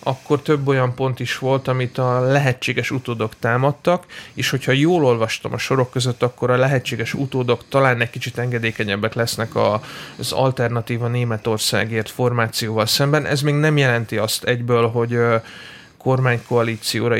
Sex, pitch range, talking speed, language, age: male, 120-135 Hz, 140 wpm, Hungarian, 30-49